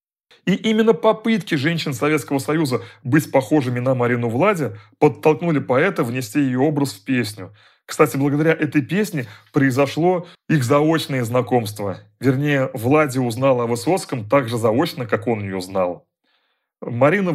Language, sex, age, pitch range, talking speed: Russian, male, 30-49, 120-155 Hz, 135 wpm